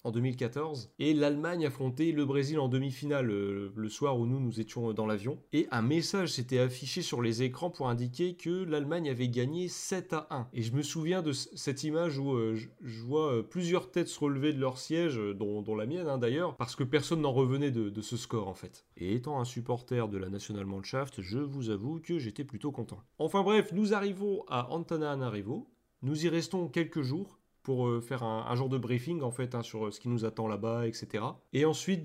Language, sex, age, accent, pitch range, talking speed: French, male, 30-49, French, 120-160 Hz, 215 wpm